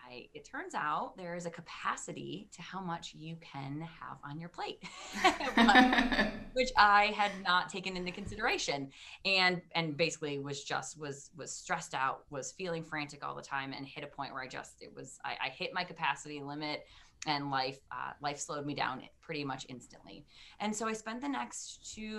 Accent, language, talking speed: American, English, 190 wpm